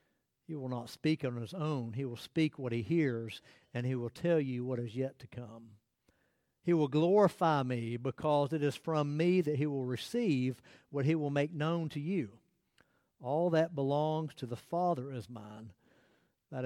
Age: 60-79